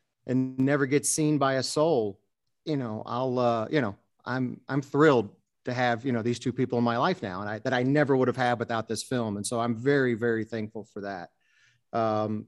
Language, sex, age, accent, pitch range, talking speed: English, male, 40-59, American, 120-165 Hz, 225 wpm